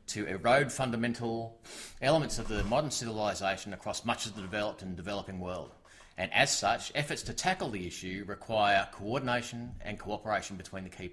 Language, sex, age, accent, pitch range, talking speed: English, male, 30-49, Australian, 95-120 Hz, 165 wpm